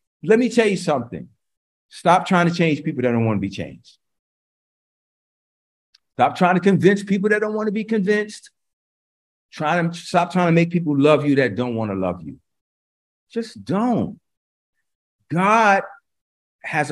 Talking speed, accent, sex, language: 165 wpm, American, male, English